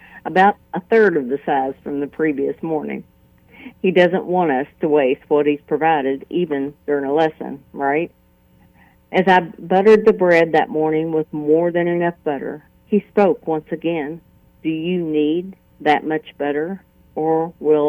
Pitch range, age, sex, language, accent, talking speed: 150-170 Hz, 50-69, female, English, American, 160 wpm